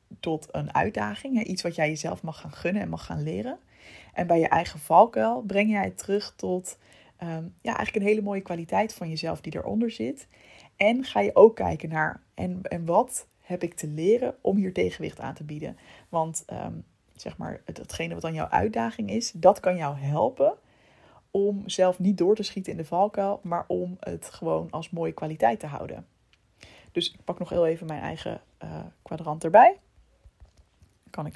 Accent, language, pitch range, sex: Dutch, Dutch, 160-200 Hz, female